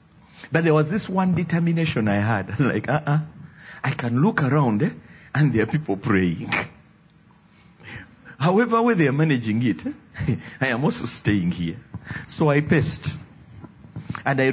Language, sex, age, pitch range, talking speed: English, male, 40-59, 110-160 Hz, 155 wpm